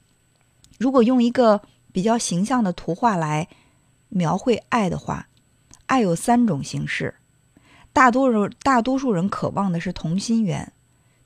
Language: Chinese